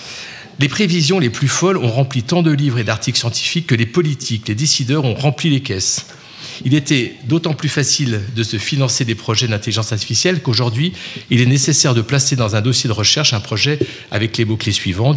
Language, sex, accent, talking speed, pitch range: French, male, French, 205 wpm, 110-145 Hz